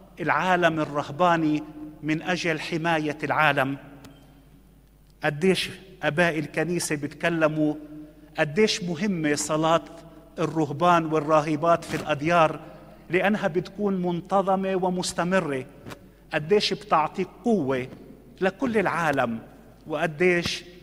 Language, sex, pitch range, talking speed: Romanian, male, 150-185 Hz, 80 wpm